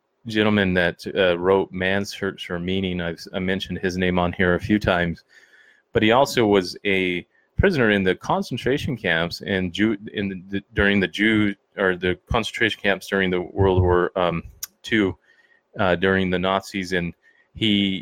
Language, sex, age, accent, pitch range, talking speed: English, male, 30-49, American, 90-110 Hz, 175 wpm